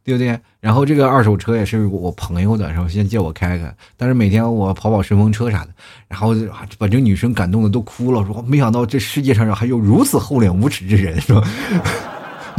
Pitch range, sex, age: 105-155 Hz, male, 20-39